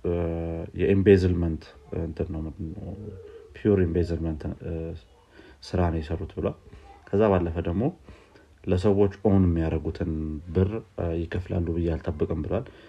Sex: male